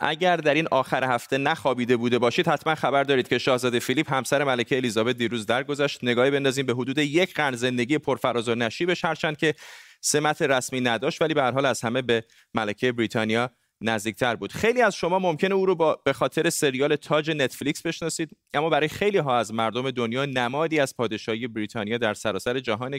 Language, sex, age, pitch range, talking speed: Persian, male, 30-49, 115-145 Hz, 180 wpm